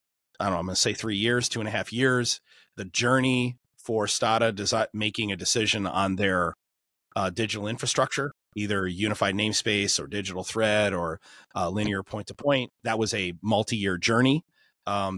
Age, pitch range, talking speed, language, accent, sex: 30-49, 95-115 Hz, 170 wpm, English, American, male